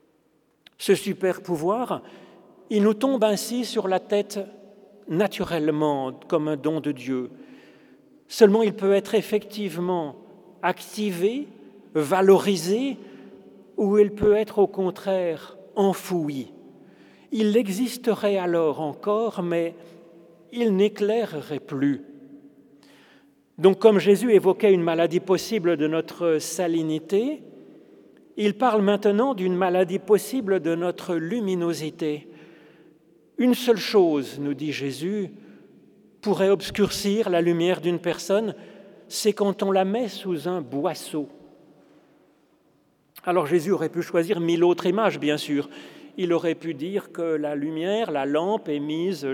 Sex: male